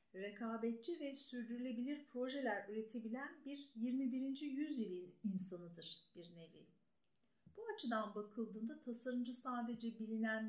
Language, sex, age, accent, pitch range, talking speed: Turkish, female, 50-69, native, 210-270 Hz, 95 wpm